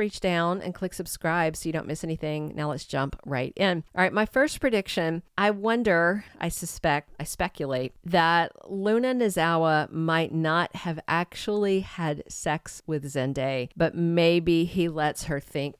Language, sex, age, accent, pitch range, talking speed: English, female, 50-69, American, 155-185 Hz, 165 wpm